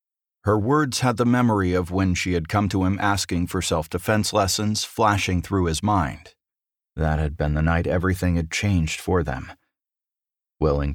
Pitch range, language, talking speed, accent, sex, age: 80-100 Hz, English, 170 wpm, American, male, 40-59